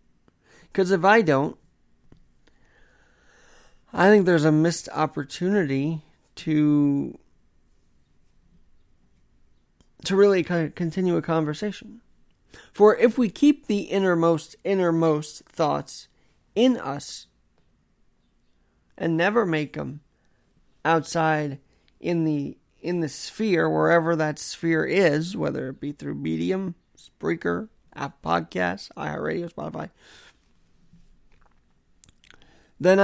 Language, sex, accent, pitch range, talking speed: English, male, American, 145-185 Hz, 95 wpm